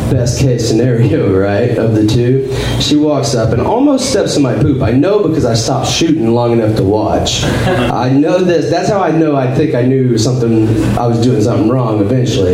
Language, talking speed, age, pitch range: English, 210 wpm, 30-49, 105-130 Hz